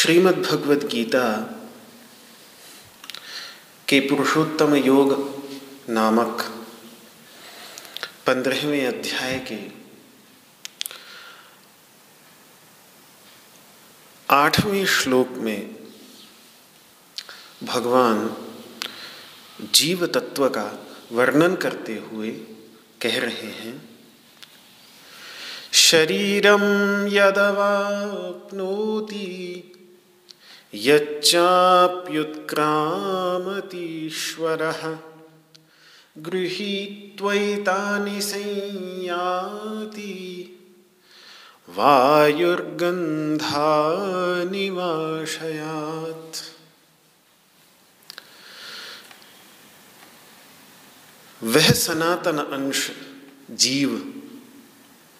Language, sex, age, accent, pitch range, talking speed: Hindi, male, 40-59, native, 145-195 Hz, 35 wpm